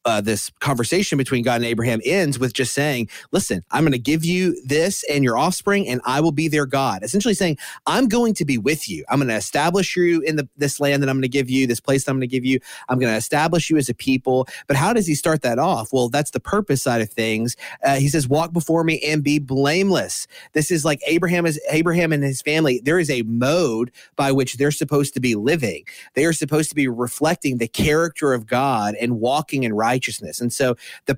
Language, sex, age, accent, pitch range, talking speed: English, male, 30-49, American, 120-155 Hz, 245 wpm